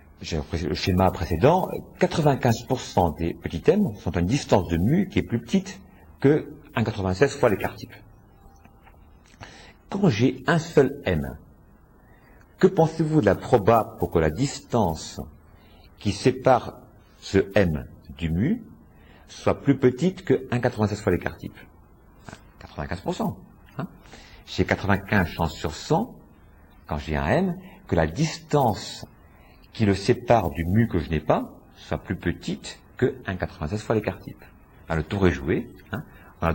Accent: French